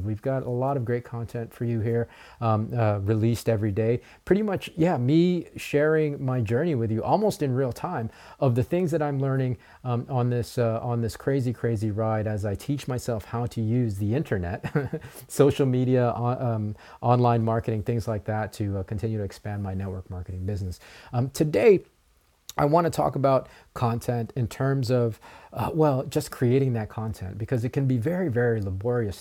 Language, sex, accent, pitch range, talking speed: English, male, American, 110-135 Hz, 190 wpm